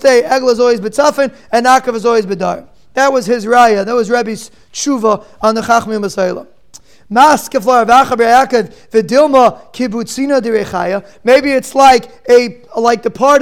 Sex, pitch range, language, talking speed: male, 230-270 Hz, English, 80 wpm